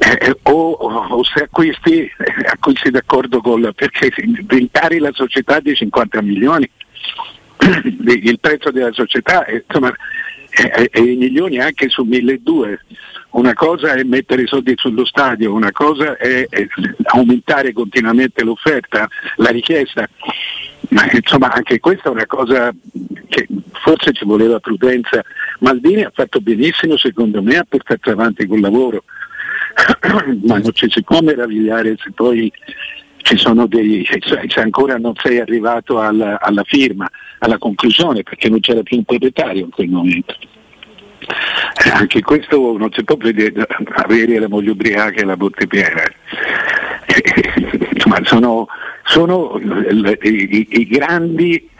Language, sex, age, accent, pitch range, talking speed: Italian, male, 60-79, native, 110-140 Hz, 145 wpm